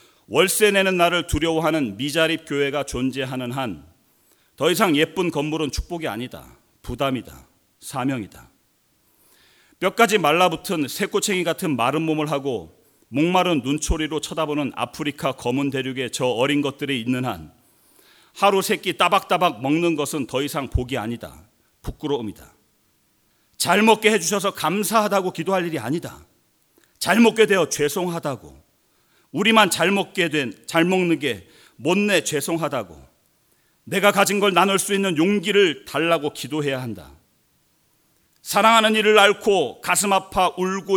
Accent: native